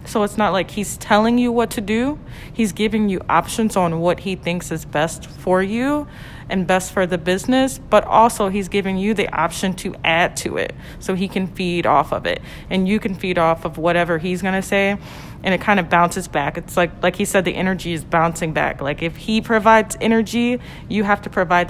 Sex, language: female, English